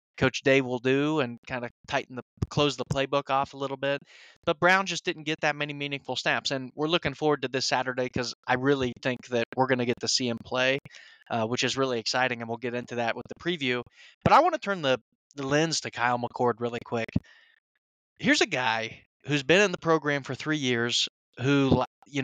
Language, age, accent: English, 20-39, American